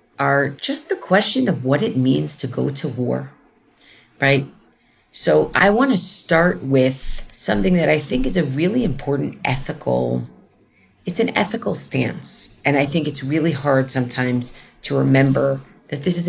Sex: female